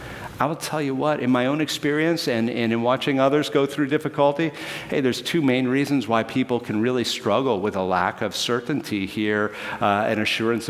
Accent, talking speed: American, 200 wpm